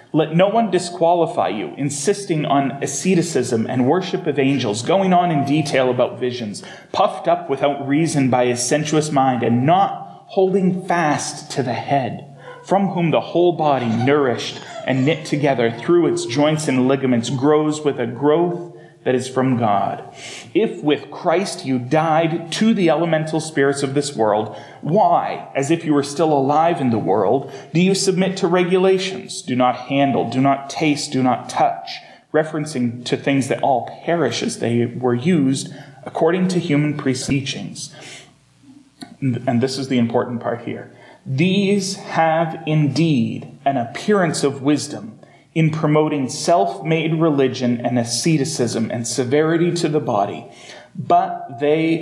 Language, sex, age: English, male, 30-49